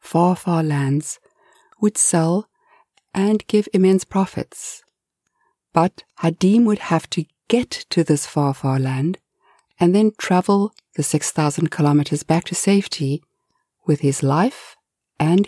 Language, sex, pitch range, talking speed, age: English, female, 155-215 Hz, 120 wpm, 60-79